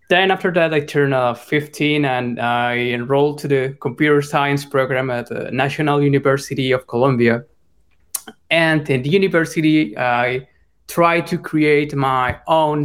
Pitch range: 125-155 Hz